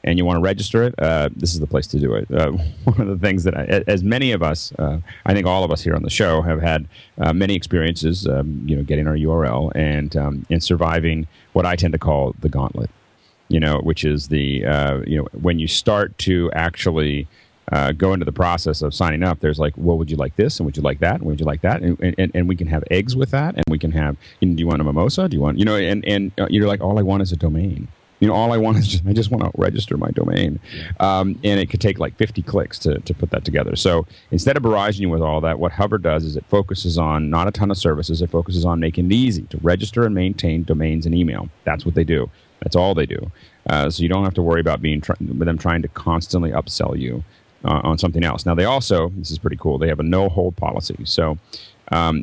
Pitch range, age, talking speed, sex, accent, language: 80-100 Hz, 40-59, 265 wpm, male, American, English